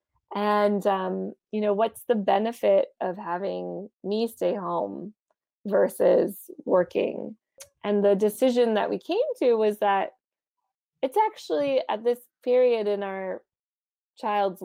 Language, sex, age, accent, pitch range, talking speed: English, female, 20-39, American, 190-245 Hz, 125 wpm